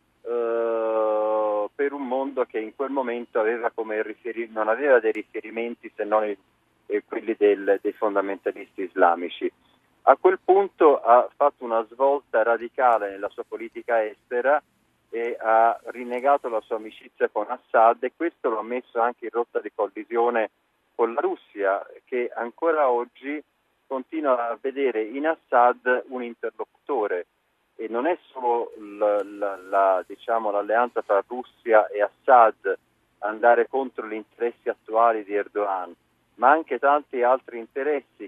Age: 40-59